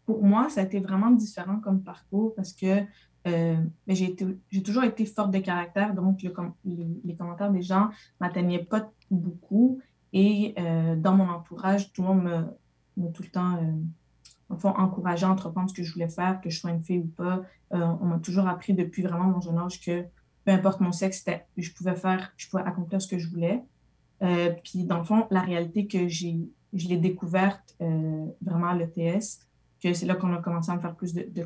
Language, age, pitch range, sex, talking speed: French, 20-39, 175-195 Hz, female, 220 wpm